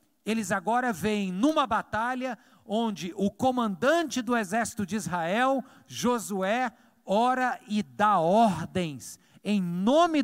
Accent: Brazilian